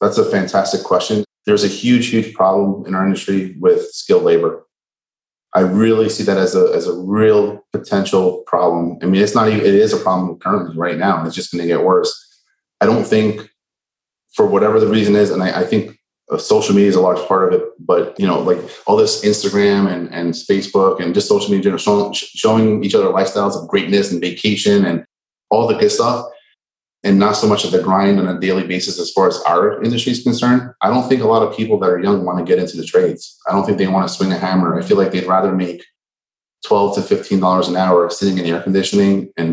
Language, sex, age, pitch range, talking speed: English, male, 30-49, 90-120 Hz, 235 wpm